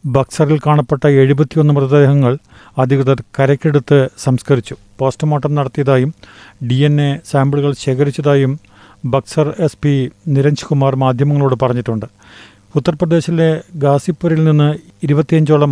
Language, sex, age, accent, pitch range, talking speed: Malayalam, male, 40-59, native, 135-155 Hz, 80 wpm